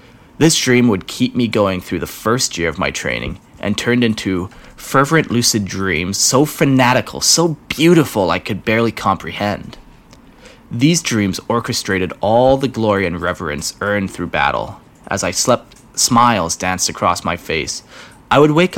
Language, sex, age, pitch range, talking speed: English, male, 30-49, 100-125 Hz, 155 wpm